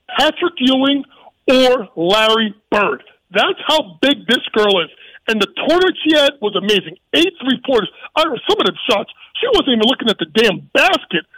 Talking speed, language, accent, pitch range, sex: 170 wpm, English, American, 215-290 Hz, male